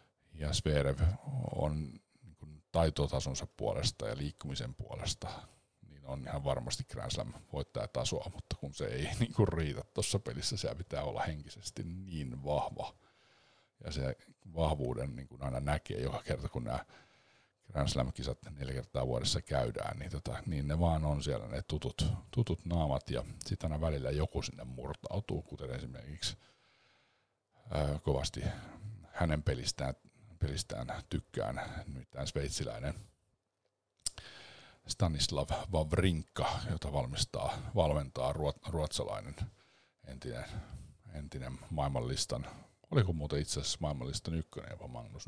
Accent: native